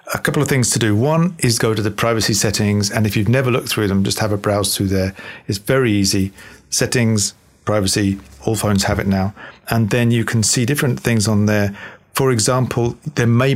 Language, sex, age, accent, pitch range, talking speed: English, male, 40-59, British, 100-120 Hz, 215 wpm